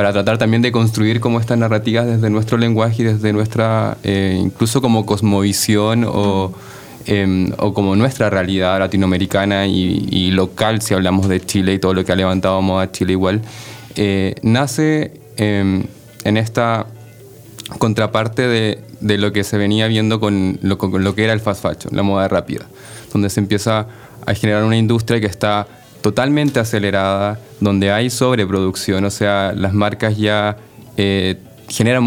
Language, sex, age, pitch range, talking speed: Spanish, male, 20-39, 100-115 Hz, 165 wpm